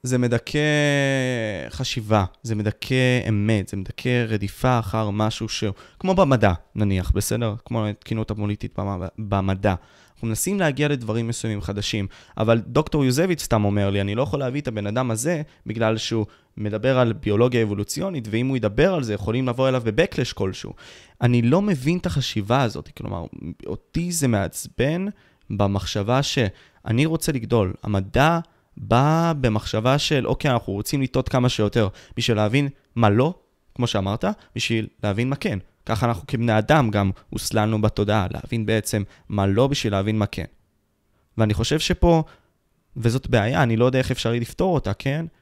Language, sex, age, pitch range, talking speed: Hebrew, male, 20-39, 105-135 Hz, 155 wpm